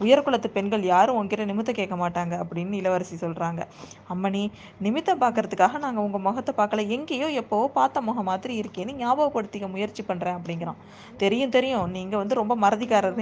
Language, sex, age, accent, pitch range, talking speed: Tamil, female, 20-39, native, 195-260 Hz, 140 wpm